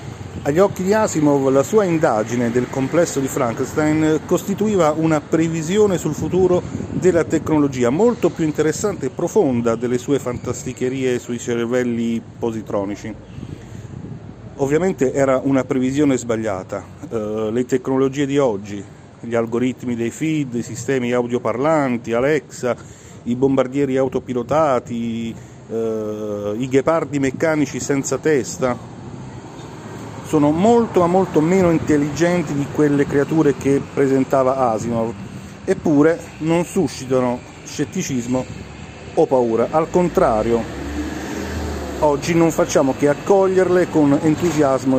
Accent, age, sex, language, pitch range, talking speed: native, 40-59, male, Italian, 120-155 Hz, 110 wpm